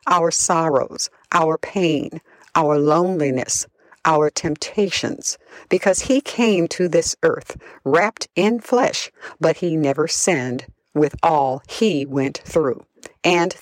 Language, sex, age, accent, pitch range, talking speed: English, female, 60-79, American, 145-200 Hz, 120 wpm